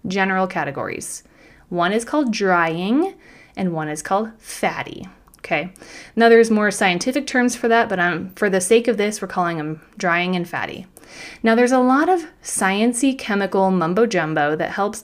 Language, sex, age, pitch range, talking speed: English, female, 20-39, 180-245 Hz, 170 wpm